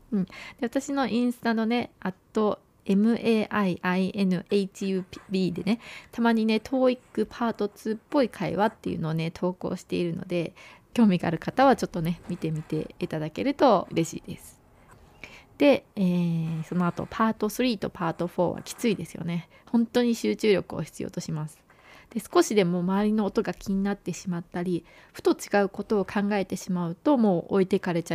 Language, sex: Japanese, female